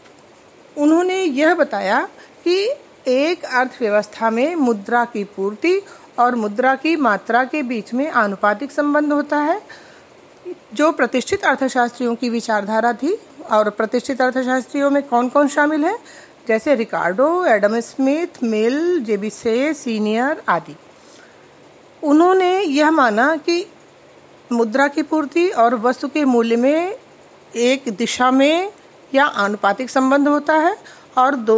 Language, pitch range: Hindi, 235-305 Hz